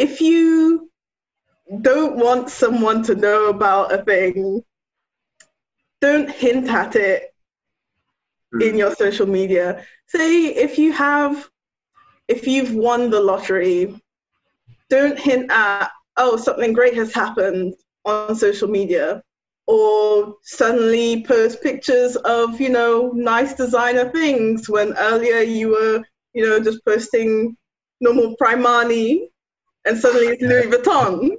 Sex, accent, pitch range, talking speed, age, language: female, British, 220-290 Hz, 120 wpm, 20-39, English